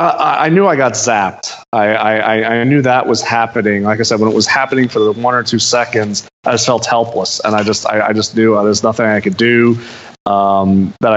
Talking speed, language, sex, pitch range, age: 230 wpm, English, male, 105-120 Hz, 20-39